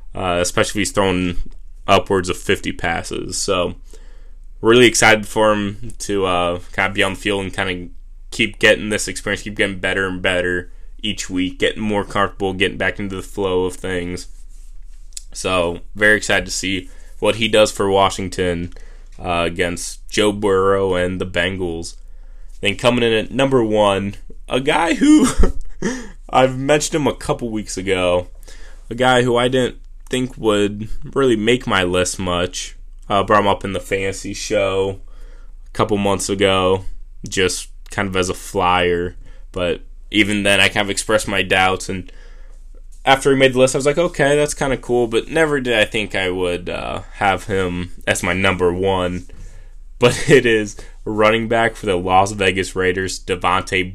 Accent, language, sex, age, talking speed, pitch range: American, English, male, 10-29, 175 wpm, 90-110 Hz